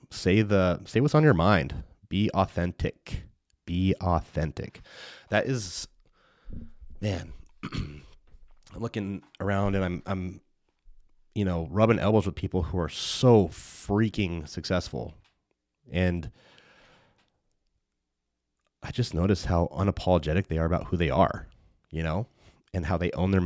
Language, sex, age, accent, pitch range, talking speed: English, male, 30-49, American, 80-100 Hz, 130 wpm